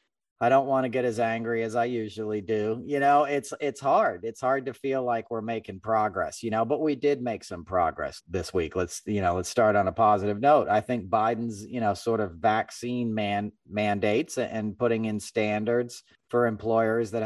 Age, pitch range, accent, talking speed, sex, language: 40-59, 105-125 Hz, American, 210 wpm, male, English